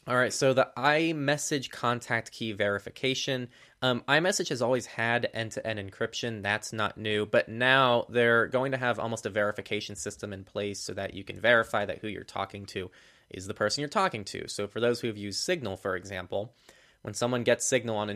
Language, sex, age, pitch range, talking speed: English, male, 20-39, 100-120 Hz, 200 wpm